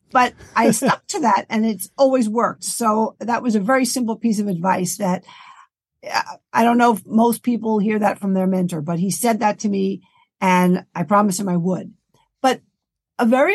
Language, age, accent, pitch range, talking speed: English, 50-69, American, 190-240 Hz, 200 wpm